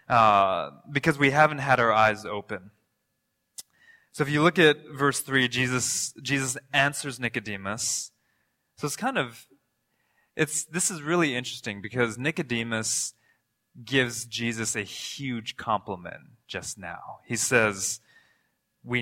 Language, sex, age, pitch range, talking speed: English, male, 20-39, 105-130 Hz, 125 wpm